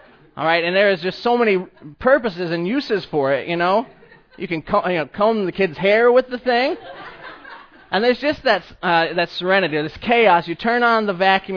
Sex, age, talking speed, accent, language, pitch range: male, 20-39, 215 wpm, American, English, 155-205 Hz